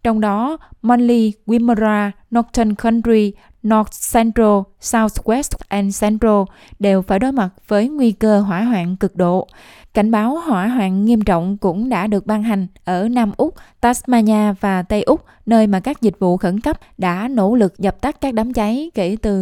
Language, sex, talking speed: Vietnamese, female, 175 wpm